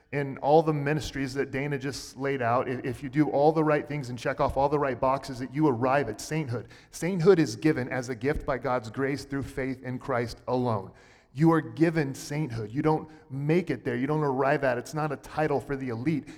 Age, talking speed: 30-49, 225 wpm